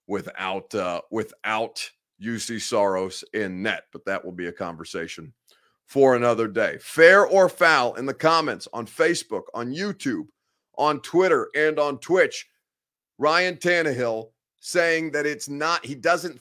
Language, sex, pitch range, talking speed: English, male, 120-180 Hz, 145 wpm